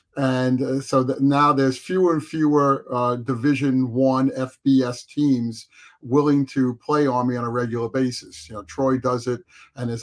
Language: English